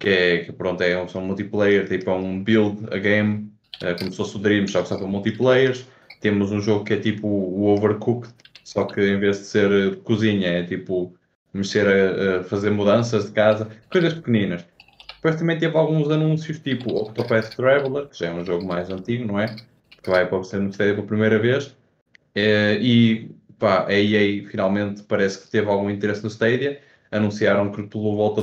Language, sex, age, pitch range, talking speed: Portuguese, male, 20-39, 95-110 Hz, 190 wpm